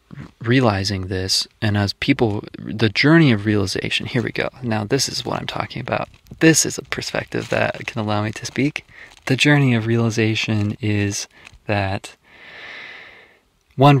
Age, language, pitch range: 20-39, English, 100-115 Hz